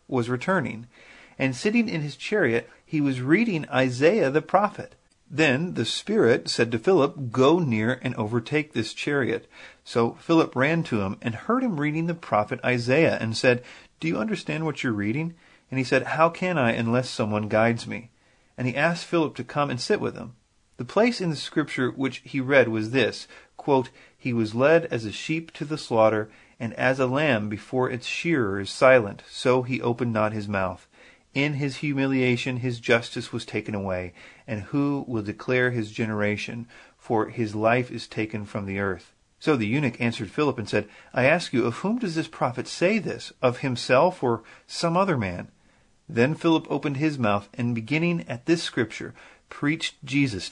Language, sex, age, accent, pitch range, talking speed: English, male, 40-59, American, 115-150 Hz, 185 wpm